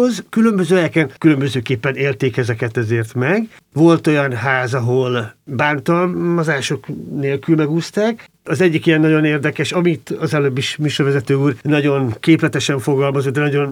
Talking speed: 130 wpm